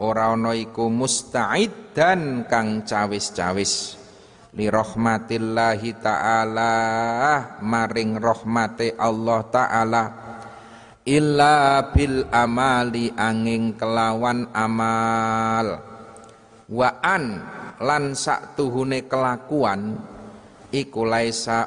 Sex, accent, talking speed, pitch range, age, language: male, native, 70 wpm, 110-120 Hz, 30-49, Indonesian